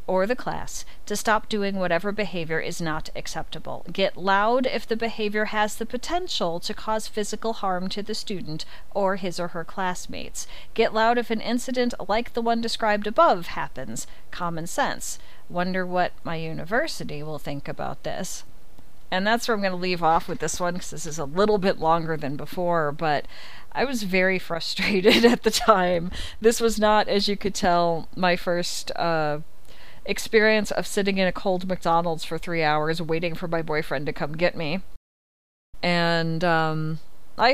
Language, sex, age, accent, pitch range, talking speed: English, female, 40-59, American, 160-210 Hz, 175 wpm